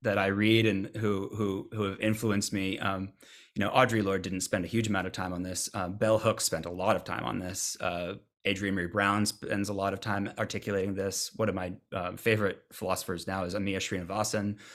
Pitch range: 95-110 Hz